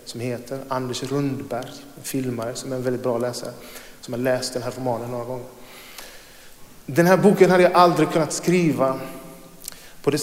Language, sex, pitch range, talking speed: Swedish, male, 125-145 Hz, 175 wpm